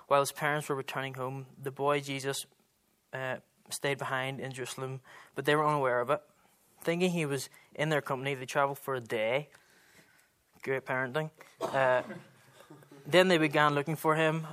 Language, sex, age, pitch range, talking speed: English, male, 20-39, 130-150 Hz, 165 wpm